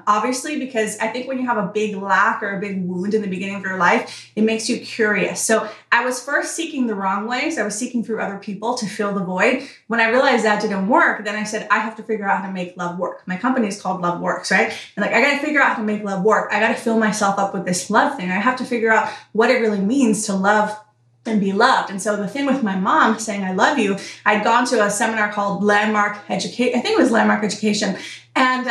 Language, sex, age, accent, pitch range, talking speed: English, female, 30-49, American, 200-255 Hz, 270 wpm